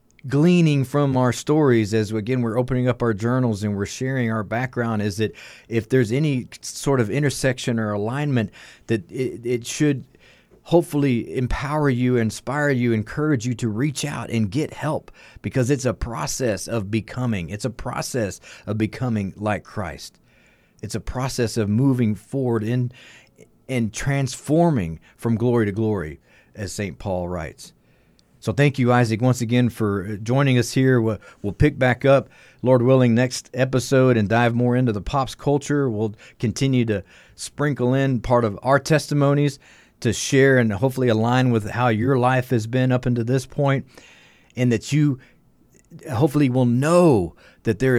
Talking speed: 165 wpm